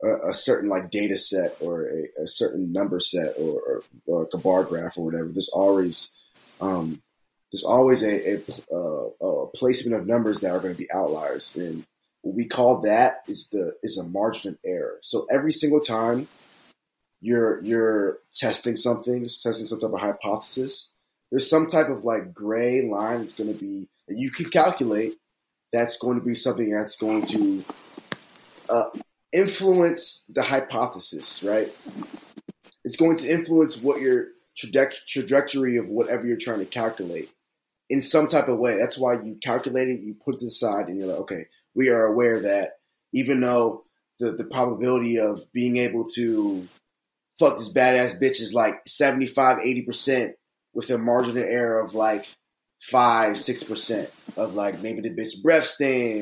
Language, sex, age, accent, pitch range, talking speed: English, male, 20-39, American, 115-155 Hz, 170 wpm